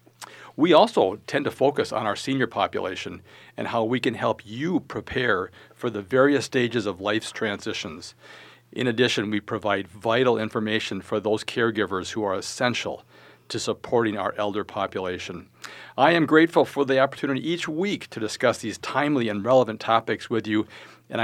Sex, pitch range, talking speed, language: male, 105-125 Hz, 165 wpm, English